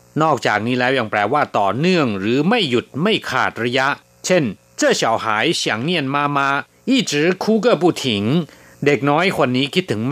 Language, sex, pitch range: Thai, male, 105-150 Hz